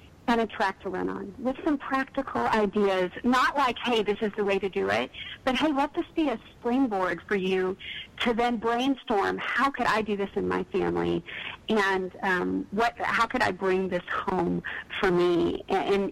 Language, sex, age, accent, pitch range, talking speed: English, female, 40-59, American, 180-240 Hz, 195 wpm